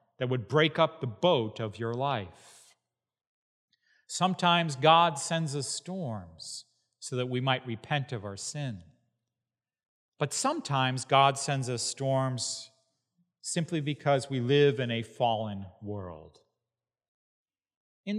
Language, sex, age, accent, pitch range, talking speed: English, male, 40-59, American, 125-175 Hz, 120 wpm